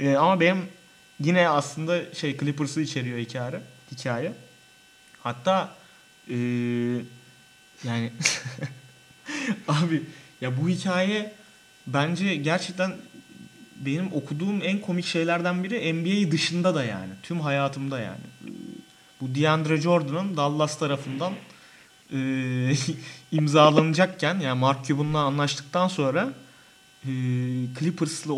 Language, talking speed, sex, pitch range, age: Turkish, 95 wpm, male, 135-180 Hz, 30-49